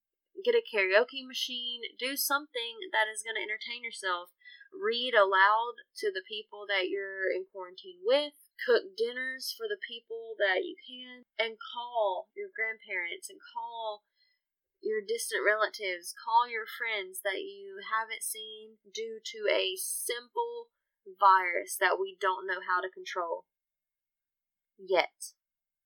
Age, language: 20-39, English